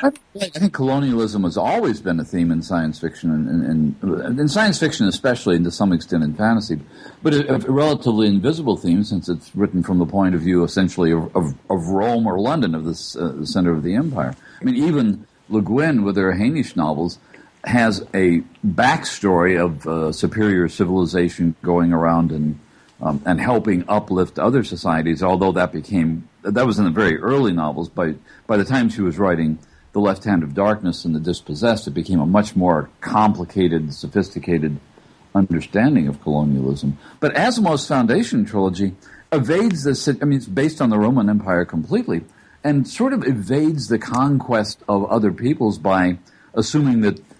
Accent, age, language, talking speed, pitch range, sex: American, 50-69, English, 175 wpm, 85-115 Hz, male